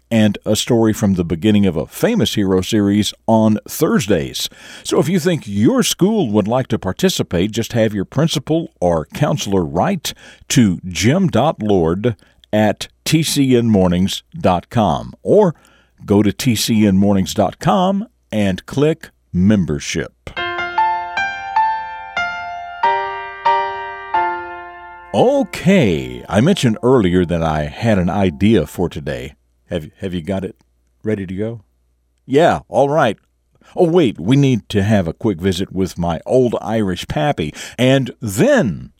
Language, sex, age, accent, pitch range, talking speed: English, male, 50-69, American, 90-130 Hz, 120 wpm